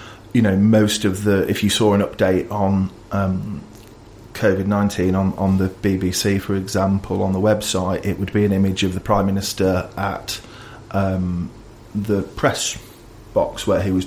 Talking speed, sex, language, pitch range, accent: 170 wpm, male, English, 95-105 Hz, British